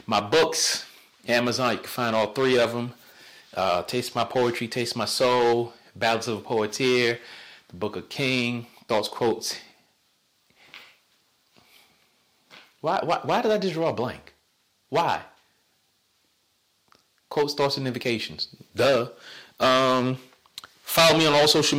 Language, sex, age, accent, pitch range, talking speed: English, male, 30-49, American, 110-150 Hz, 140 wpm